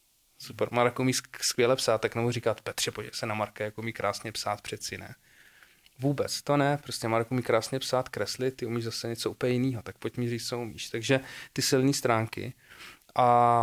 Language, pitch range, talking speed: Czech, 115-130 Hz, 195 wpm